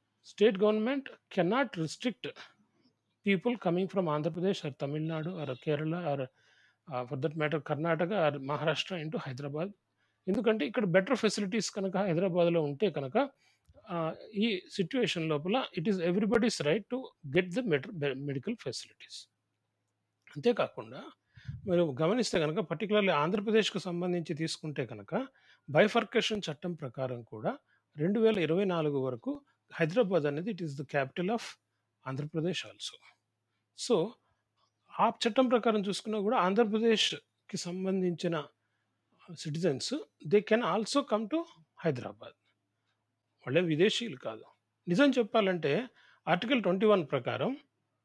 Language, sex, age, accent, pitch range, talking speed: Telugu, male, 30-49, native, 150-215 Hz, 130 wpm